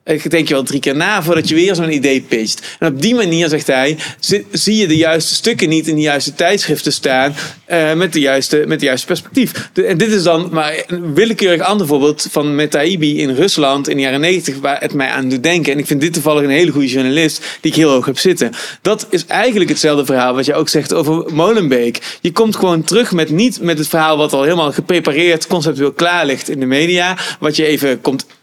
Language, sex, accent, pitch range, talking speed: Dutch, male, Dutch, 150-190 Hz, 230 wpm